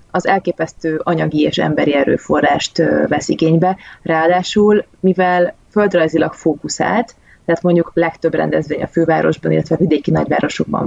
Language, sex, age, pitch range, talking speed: Hungarian, female, 20-39, 160-185 Hz, 115 wpm